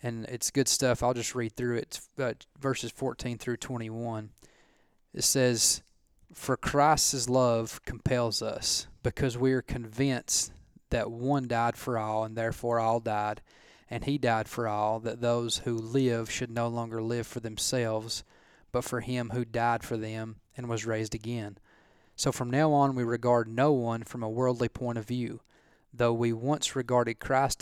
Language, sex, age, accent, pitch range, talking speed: English, male, 20-39, American, 115-130 Hz, 170 wpm